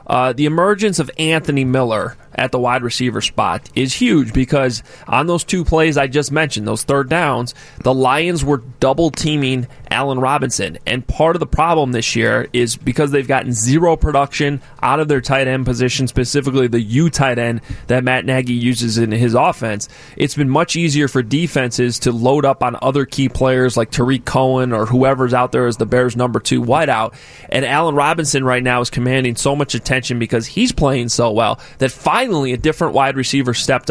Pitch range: 120-150 Hz